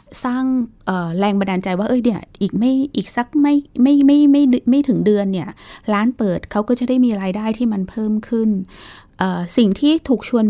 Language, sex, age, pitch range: Thai, female, 20-39, 185-240 Hz